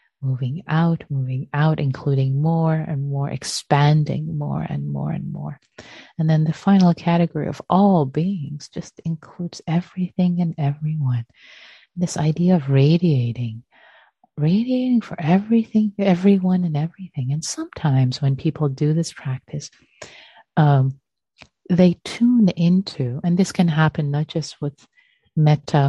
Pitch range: 140-180 Hz